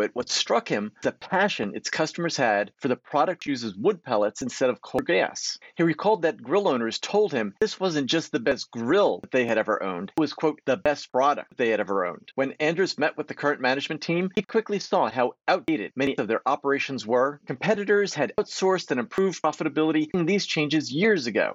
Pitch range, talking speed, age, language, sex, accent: 135-190 Hz, 215 wpm, 40-59, English, male, American